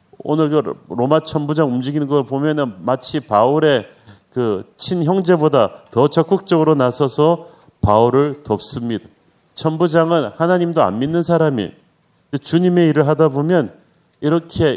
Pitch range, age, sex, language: 135-165 Hz, 40-59, male, Korean